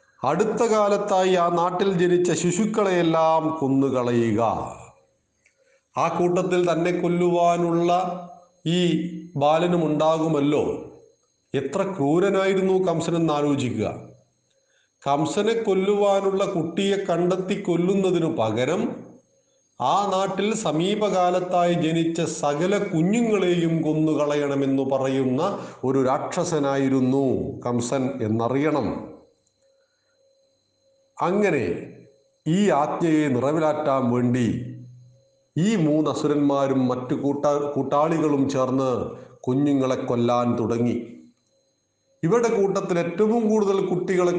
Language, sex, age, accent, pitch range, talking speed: Malayalam, male, 40-59, native, 140-195 Hz, 75 wpm